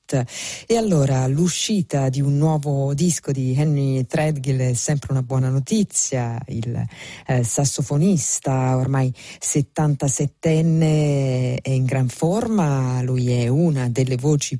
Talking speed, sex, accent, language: 125 wpm, female, native, Italian